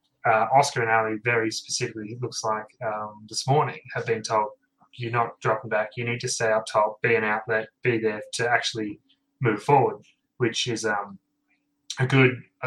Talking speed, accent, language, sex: 190 wpm, Australian, English, male